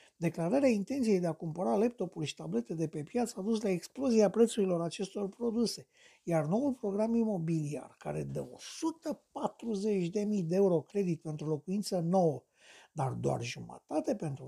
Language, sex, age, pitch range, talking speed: Romanian, male, 60-79, 155-215 Hz, 145 wpm